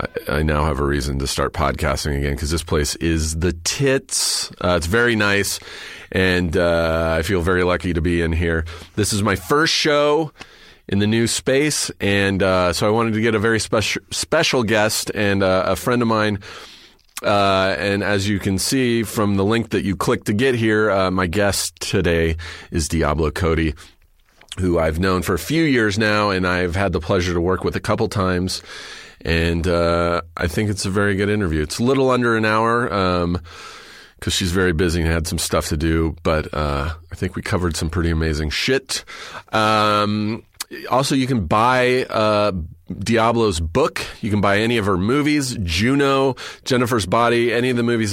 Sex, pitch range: male, 85-110 Hz